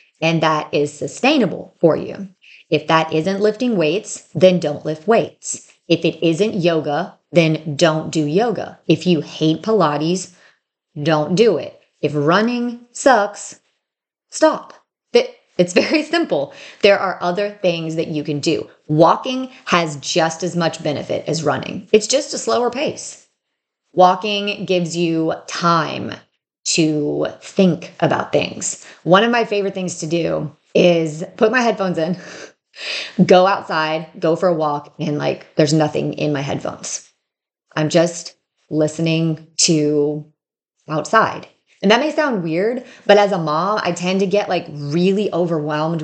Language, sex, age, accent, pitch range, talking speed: English, female, 30-49, American, 155-200 Hz, 145 wpm